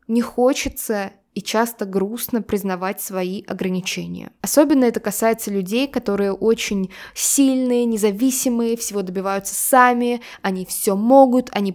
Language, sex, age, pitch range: Russian, female, 20-39, 210-250 Hz